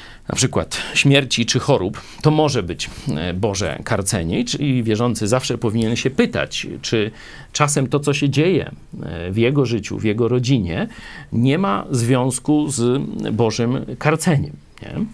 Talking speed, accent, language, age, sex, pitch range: 135 wpm, native, Polish, 40-59, male, 95-135 Hz